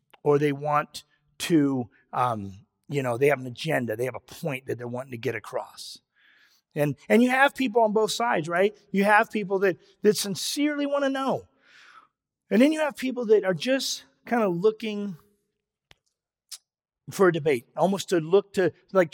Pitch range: 180-260 Hz